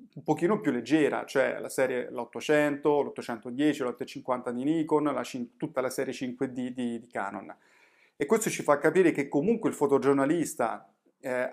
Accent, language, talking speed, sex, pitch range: native, Italian, 145 wpm, male, 125-165 Hz